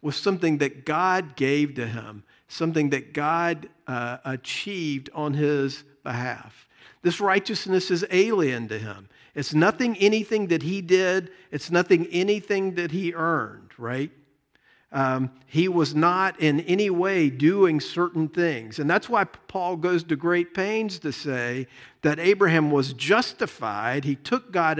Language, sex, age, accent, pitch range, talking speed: English, male, 50-69, American, 140-185 Hz, 150 wpm